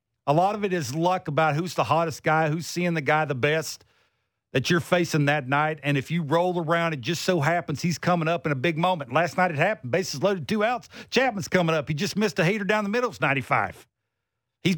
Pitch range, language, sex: 140-195 Hz, English, male